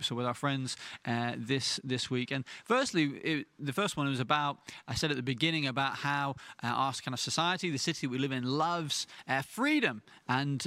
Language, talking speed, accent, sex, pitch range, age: English, 200 wpm, British, male, 130-160 Hz, 30-49